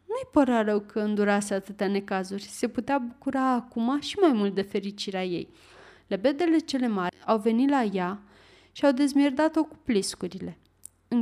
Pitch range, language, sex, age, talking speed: 215-290 Hz, Romanian, female, 30-49, 165 wpm